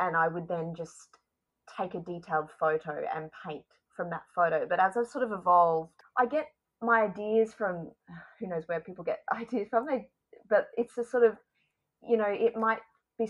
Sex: female